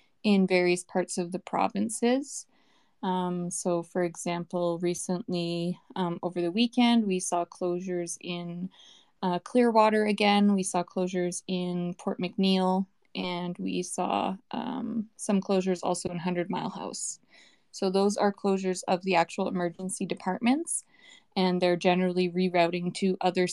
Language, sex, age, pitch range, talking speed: English, female, 20-39, 180-205 Hz, 140 wpm